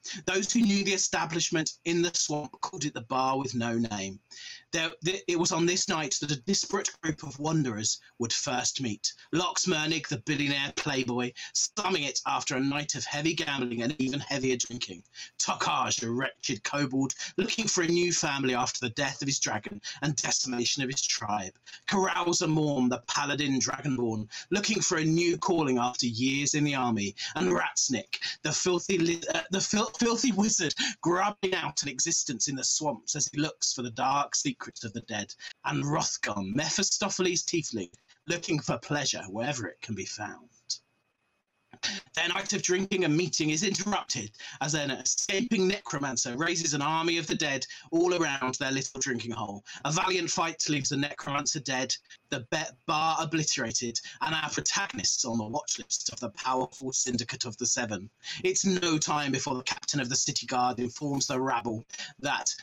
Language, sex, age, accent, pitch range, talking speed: English, male, 30-49, British, 130-170 Hz, 175 wpm